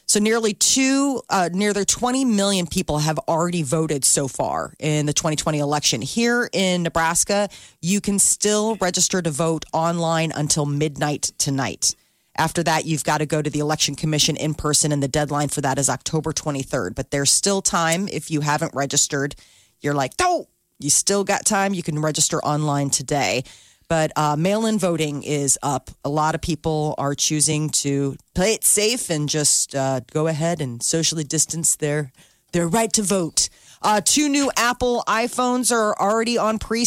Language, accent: Japanese, American